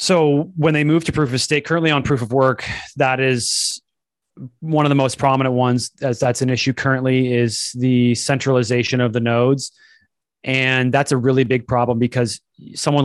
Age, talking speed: 30-49, 185 wpm